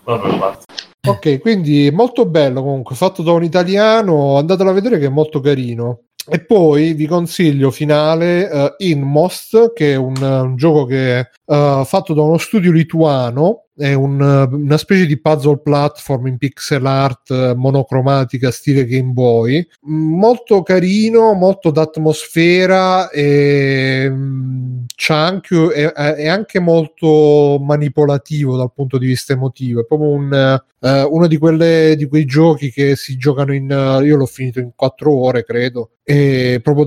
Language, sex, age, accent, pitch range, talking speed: Italian, male, 30-49, native, 135-160 Hz, 150 wpm